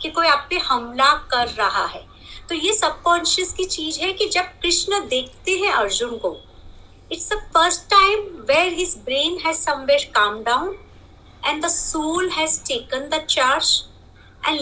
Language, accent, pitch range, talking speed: Hindi, native, 270-360 Hz, 105 wpm